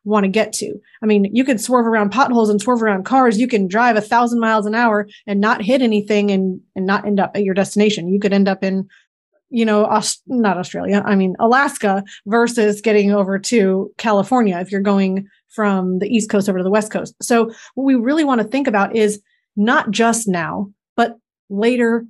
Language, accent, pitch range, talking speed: English, American, 205-235 Hz, 215 wpm